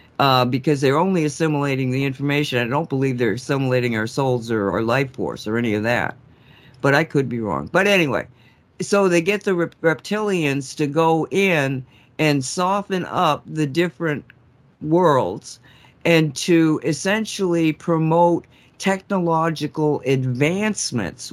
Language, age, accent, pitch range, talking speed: English, 50-69, American, 130-160 Hz, 140 wpm